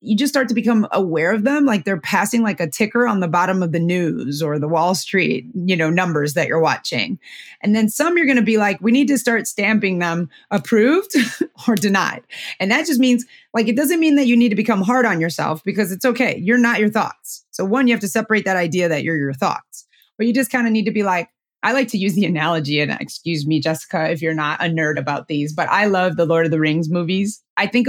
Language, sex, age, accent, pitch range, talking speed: English, female, 30-49, American, 175-240 Hz, 255 wpm